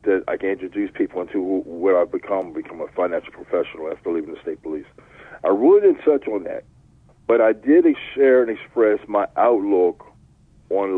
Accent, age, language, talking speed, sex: American, 50-69, English, 180 wpm, male